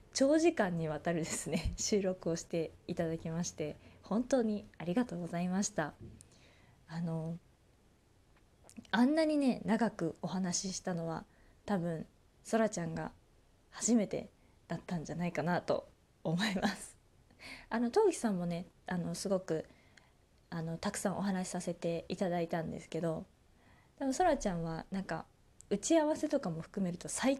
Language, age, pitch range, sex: Japanese, 20-39, 170-245 Hz, female